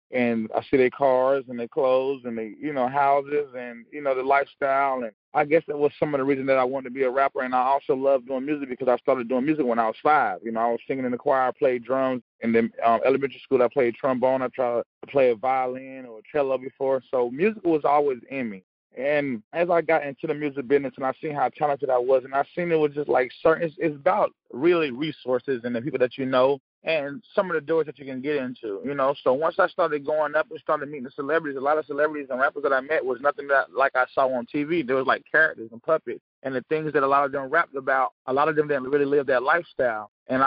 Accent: American